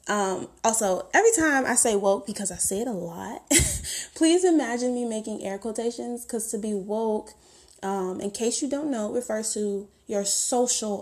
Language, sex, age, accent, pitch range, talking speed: English, female, 20-39, American, 200-295 Hz, 185 wpm